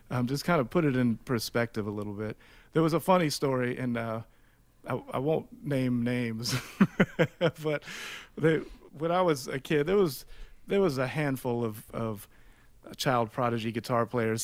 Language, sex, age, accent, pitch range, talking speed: English, male, 40-59, American, 115-135 Hz, 175 wpm